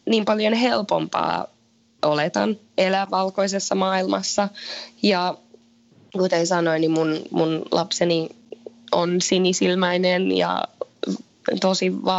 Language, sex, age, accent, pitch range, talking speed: Finnish, female, 20-39, native, 165-205 Hz, 90 wpm